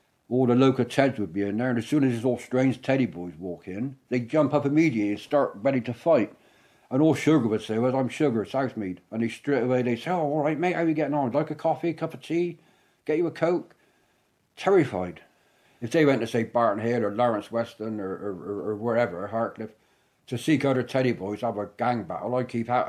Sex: male